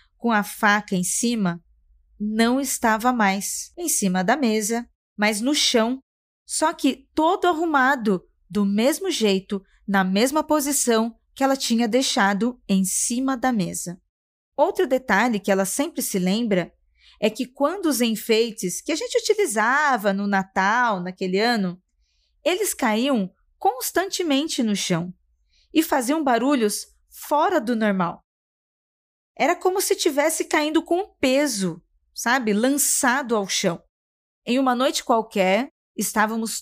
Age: 20-39